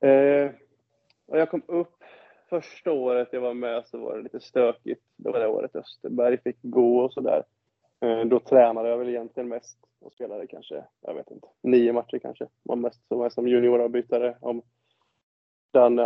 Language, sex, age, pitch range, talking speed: Swedish, male, 20-39, 120-145 Hz, 190 wpm